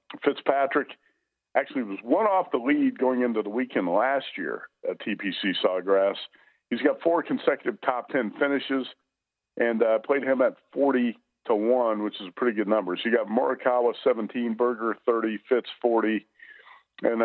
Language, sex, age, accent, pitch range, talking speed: English, male, 50-69, American, 105-135 Hz, 165 wpm